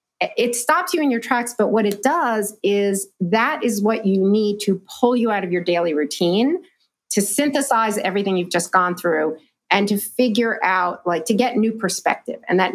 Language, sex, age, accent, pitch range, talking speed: English, female, 40-59, American, 180-235 Hz, 200 wpm